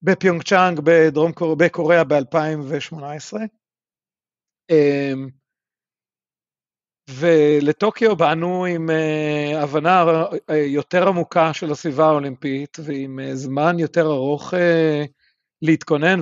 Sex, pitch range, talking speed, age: male, 145-175 Hz, 70 wpm, 50-69